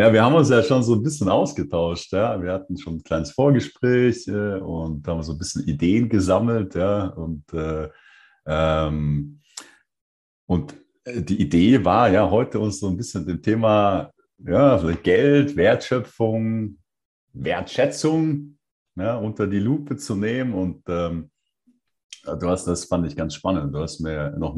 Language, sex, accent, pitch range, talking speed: German, male, German, 80-115 Hz, 160 wpm